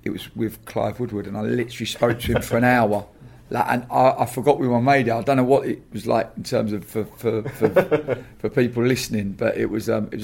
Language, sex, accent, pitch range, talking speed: English, male, British, 105-120 Hz, 265 wpm